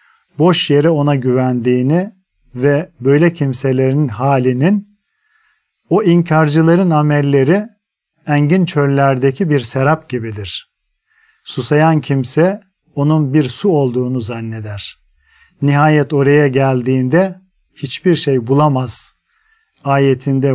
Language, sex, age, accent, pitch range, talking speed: Turkish, male, 50-69, native, 130-170 Hz, 90 wpm